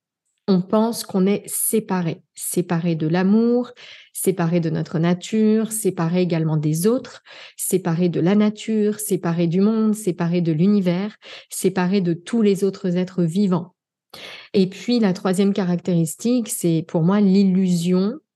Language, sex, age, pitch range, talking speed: French, female, 30-49, 175-210 Hz, 135 wpm